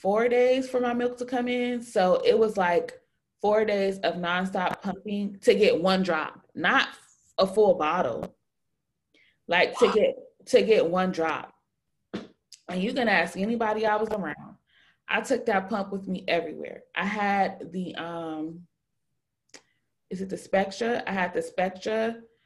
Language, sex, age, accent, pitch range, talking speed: English, female, 20-39, American, 175-220 Hz, 160 wpm